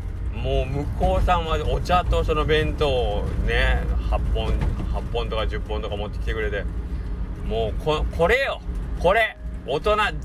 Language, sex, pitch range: Japanese, male, 90-105 Hz